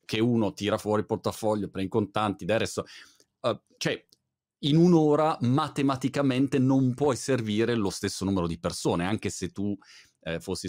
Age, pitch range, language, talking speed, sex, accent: 40-59, 95-130 Hz, Italian, 155 wpm, male, native